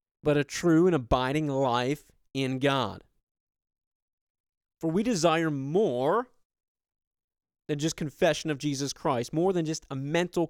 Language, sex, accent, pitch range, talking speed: English, male, American, 115-150 Hz, 130 wpm